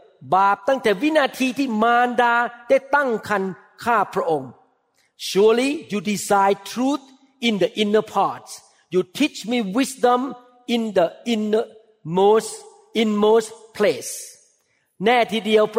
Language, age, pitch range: Thai, 50-69, 200-245 Hz